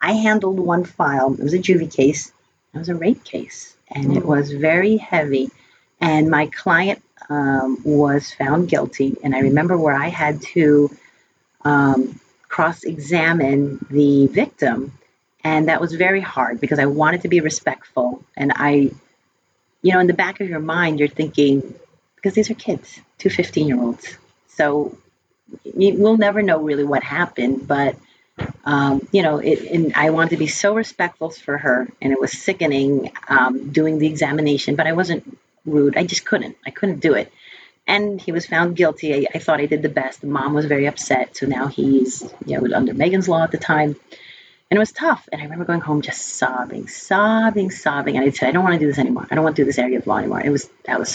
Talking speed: 200 wpm